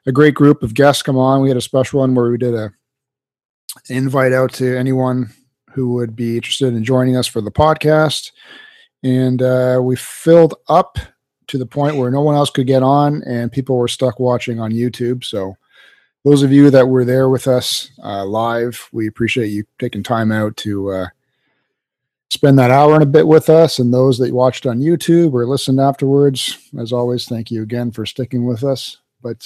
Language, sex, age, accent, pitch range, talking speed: English, male, 40-59, American, 120-140 Hz, 200 wpm